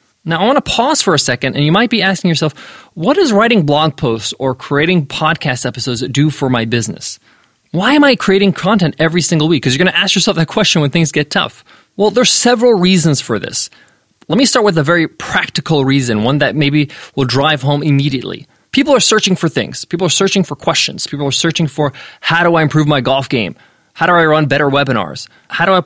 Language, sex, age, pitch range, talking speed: English, male, 20-39, 140-180 Hz, 225 wpm